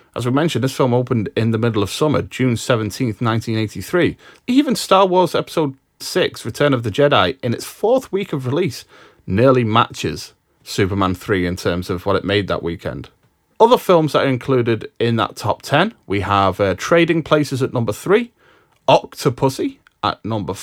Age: 30-49